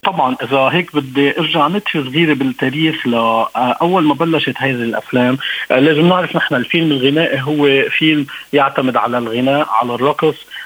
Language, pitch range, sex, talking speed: Arabic, 125-160 Hz, male, 140 wpm